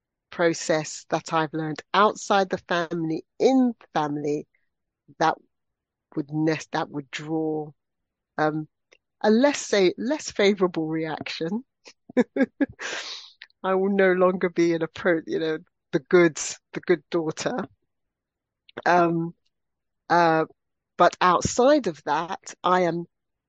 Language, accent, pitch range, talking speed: English, British, 155-210 Hz, 110 wpm